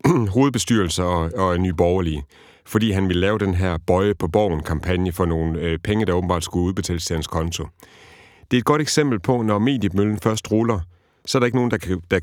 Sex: male